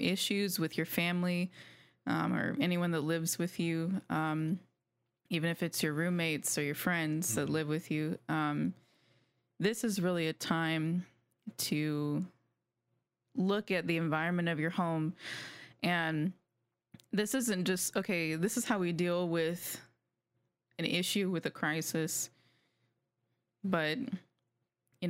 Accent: American